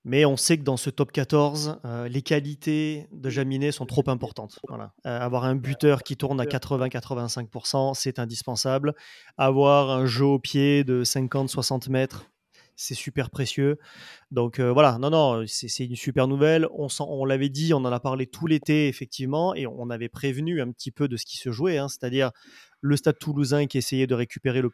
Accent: French